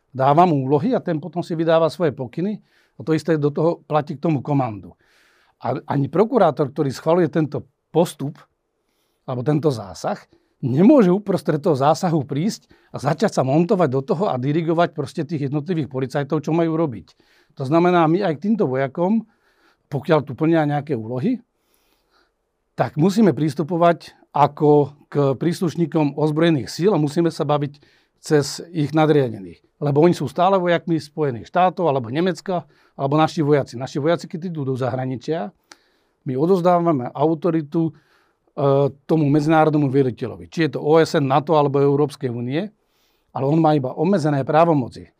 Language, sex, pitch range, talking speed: Slovak, male, 140-170 Hz, 150 wpm